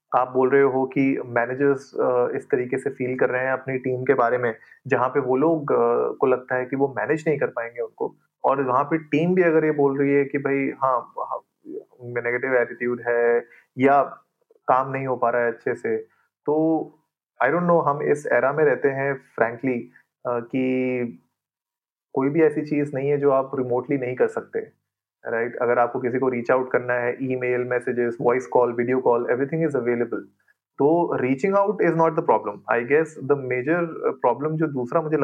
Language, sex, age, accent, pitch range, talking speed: Hindi, male, 30-49, native, 125-160 Hz, 190 wpm